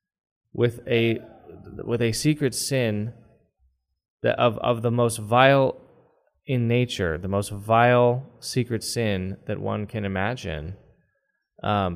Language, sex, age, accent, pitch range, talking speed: English, male, 20-39, American, 105-130 Hz, 120 wpm